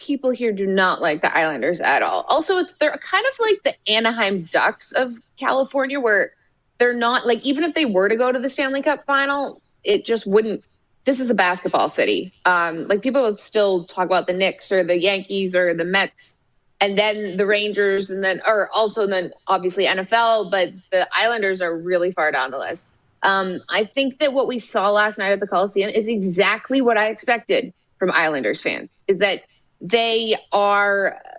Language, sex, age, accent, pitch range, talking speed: English, female, 20-39, American, 190-245 Hz, 195 wpm